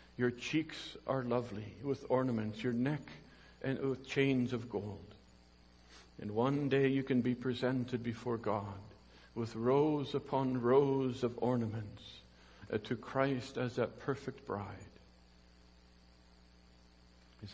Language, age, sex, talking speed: English, 60-79, male, 120 wpm